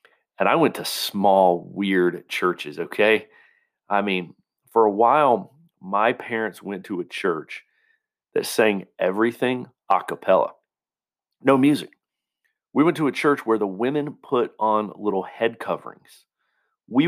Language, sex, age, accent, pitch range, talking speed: English, male, 40-59, American, 90-110 Hz, 140 wpm